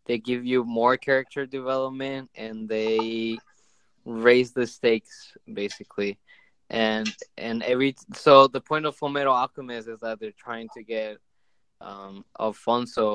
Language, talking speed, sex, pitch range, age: English, 130 wpm, male, 110-135 Hz, 20-39